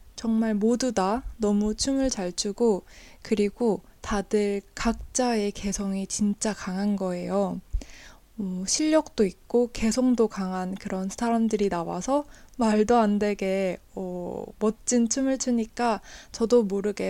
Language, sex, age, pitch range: Korean, female, 20-39, 195-235 Hz